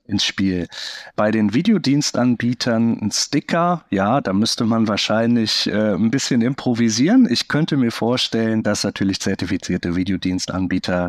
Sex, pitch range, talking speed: male, 95-115 Hz, 130 wpm